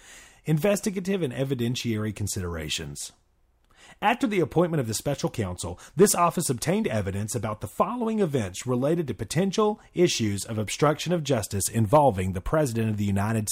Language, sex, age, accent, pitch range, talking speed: English, male, 30-49, American, 105-150 Hz, 145 wpm